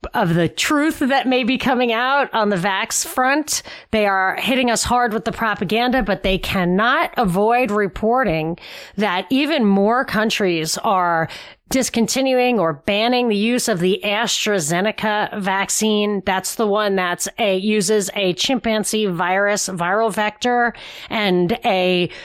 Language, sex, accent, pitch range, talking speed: English, female, American, 190-235 Hz, 140 wpm